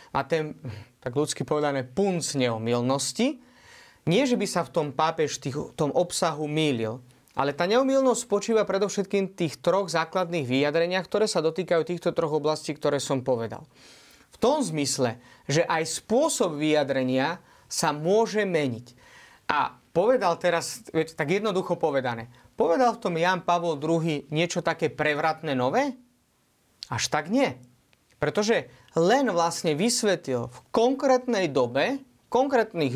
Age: 30-49